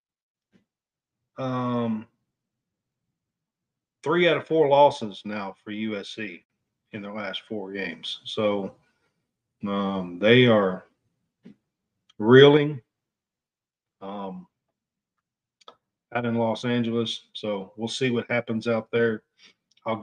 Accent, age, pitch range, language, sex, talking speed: American, 40-59, 105-130 Hz, English, male, 95 wpm